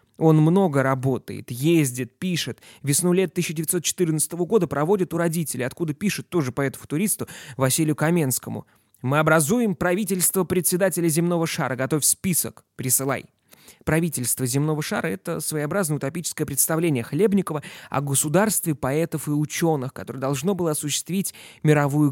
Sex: male